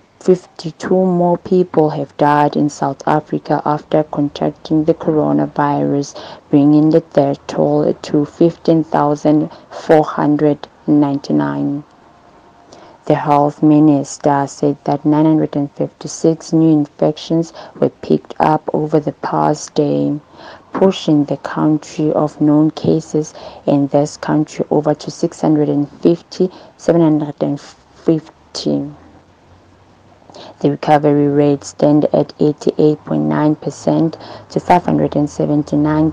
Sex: female